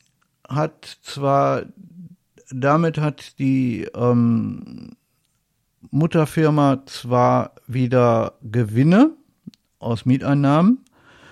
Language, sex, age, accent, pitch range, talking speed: German, male, 50-69, German, 125-150 Hz, 65 wpm